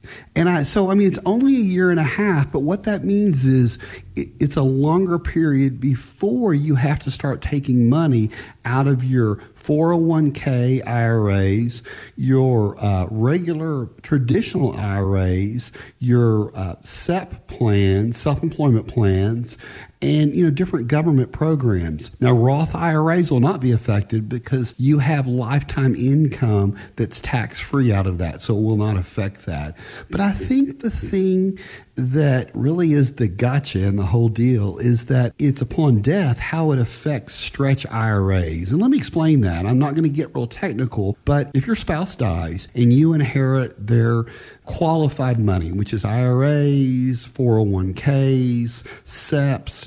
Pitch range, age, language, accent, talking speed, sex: 110-150 Hz, 40-59, English, American, 150 wpm, male